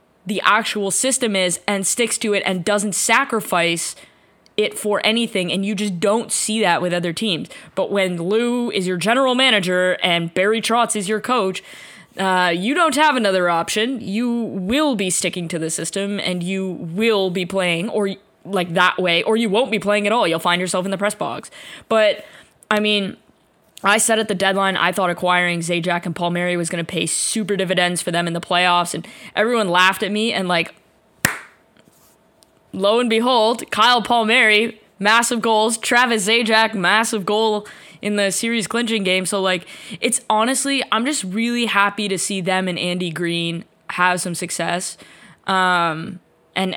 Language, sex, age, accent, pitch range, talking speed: English, female, 10-29, American, 180-220 Hz, 180 wpm